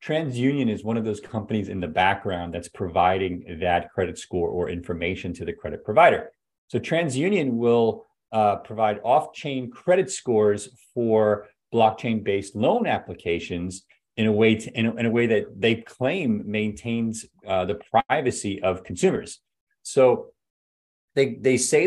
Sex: male